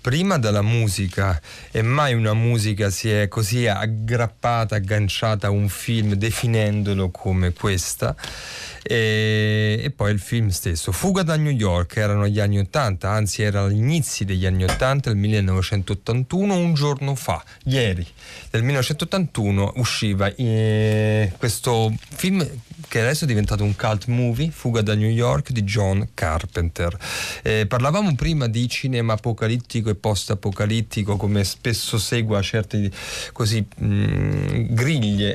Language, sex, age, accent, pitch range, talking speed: Italian, male, 30-49, native, 100-125 Hz, 135 wpm